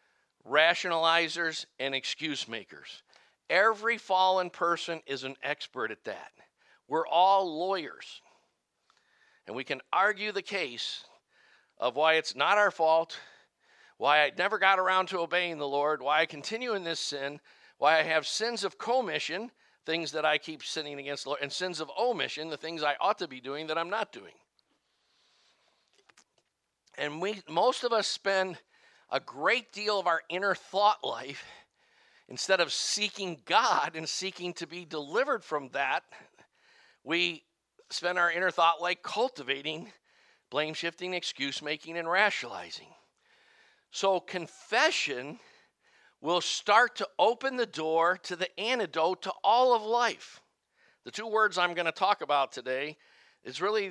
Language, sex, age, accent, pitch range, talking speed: English, male, 50-69, American, 155-200 Hz, 150 wpm